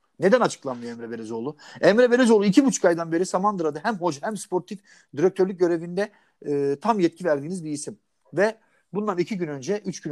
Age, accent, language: 50-69, native, Turkish